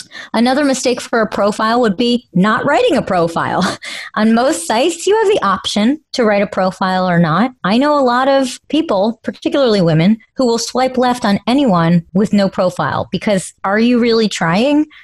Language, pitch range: English, 185-250 Hz